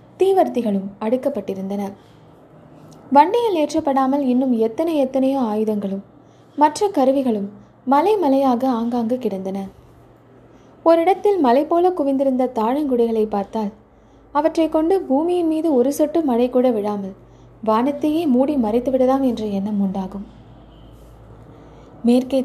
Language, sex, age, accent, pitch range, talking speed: Tamil, female, 20-39, native, 215-290 Hz, 100 wpm